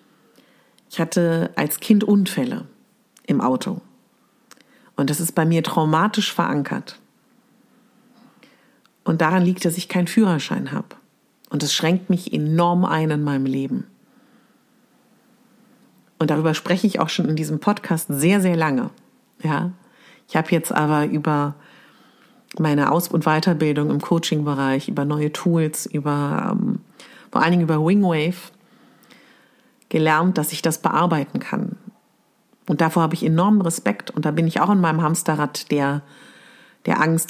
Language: German